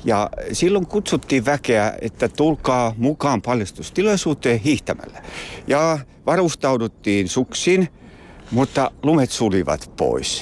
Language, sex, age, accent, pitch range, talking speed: Finnish, male, 60-79, native, 105-160 Hz, 90 wpm